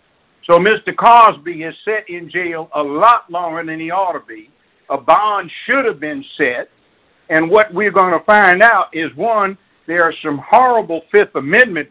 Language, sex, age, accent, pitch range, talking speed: English, male, 60-79, American, 150-200 Hz, 180 wpm